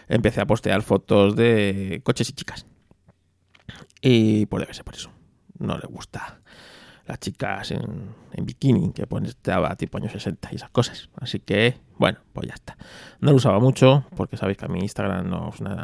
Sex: male